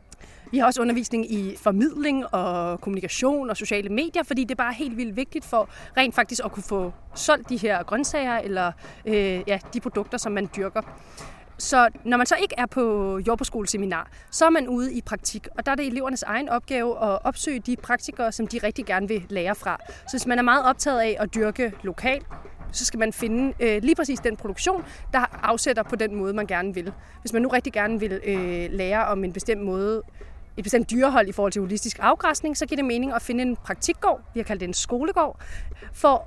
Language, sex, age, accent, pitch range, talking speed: Danish, female, 30-49, native, 210-265 Hz, 205 wpm